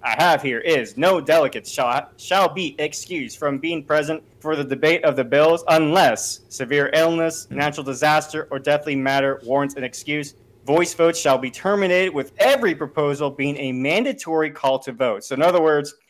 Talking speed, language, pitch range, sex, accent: 180 wpm, English, 135-165 Hz, male, American